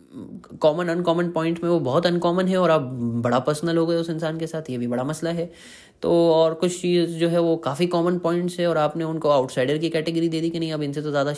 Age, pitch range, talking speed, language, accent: 20-39, 140-175 Hz, 255 wpm, Hindi, native